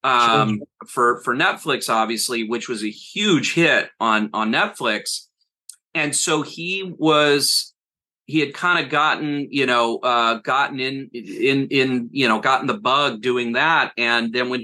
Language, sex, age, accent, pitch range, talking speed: English, male, 30-49, American, 120-150 Hz, 160 wpm